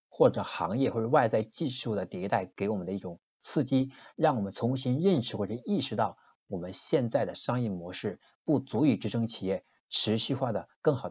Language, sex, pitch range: Chinese, male, 100-135 Hz